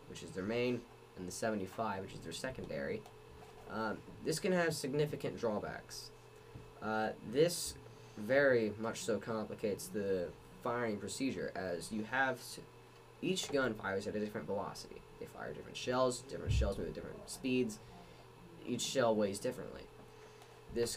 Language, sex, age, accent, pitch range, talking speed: English, male, 10-29, American, 110-130 Hz, 145 wpm